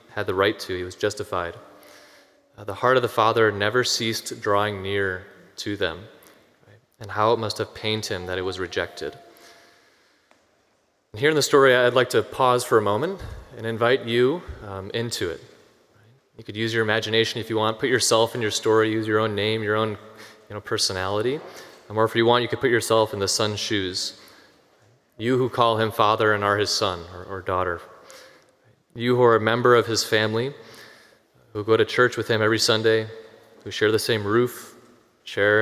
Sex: male